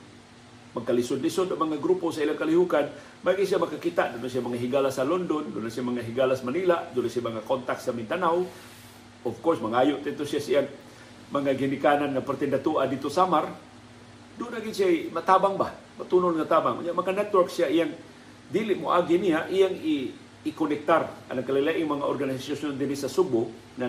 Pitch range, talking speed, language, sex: 120-170 Hz, 170 wpm, Filipino, male